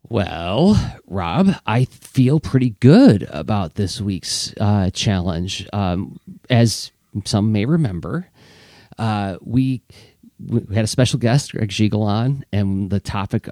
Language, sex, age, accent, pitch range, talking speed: English, male, 40-59, American, 95-125 Hz, 125 wpm